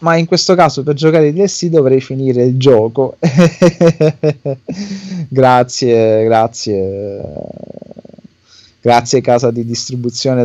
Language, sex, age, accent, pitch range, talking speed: Italian, male, 30-49, native, 115-140 Hz, 105 wpm